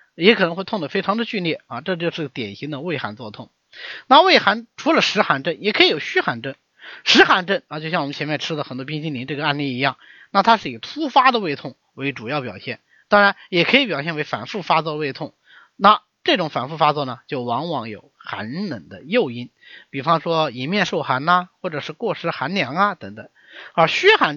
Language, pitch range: Chinese, 135-210 Hz